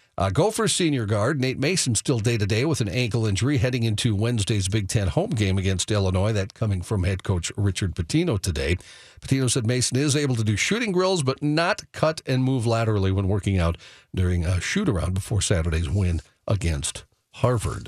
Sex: male